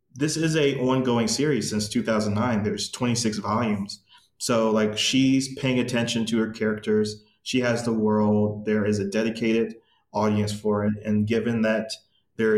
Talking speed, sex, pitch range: 155 wpm, male, 105-130 Hz